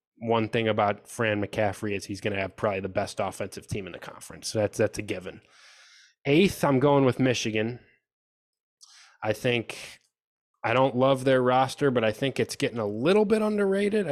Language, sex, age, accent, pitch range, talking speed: English, male, 20-39, American, 110-140 Hz, 185 wpm